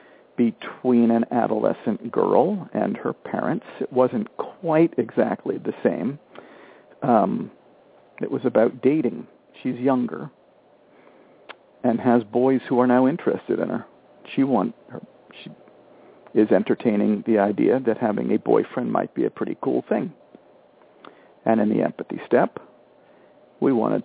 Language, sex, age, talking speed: English, male, 50-69, 135 wpm